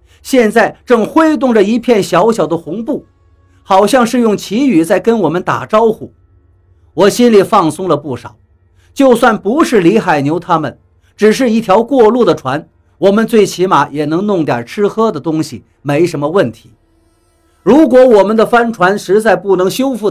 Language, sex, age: Chinese, male, 50-69